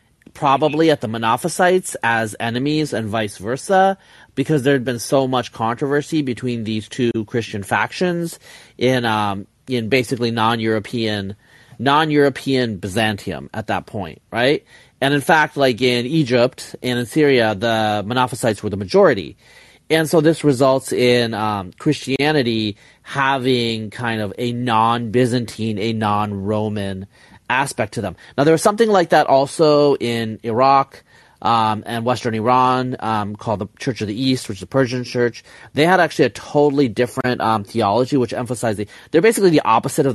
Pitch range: 110-145 Hz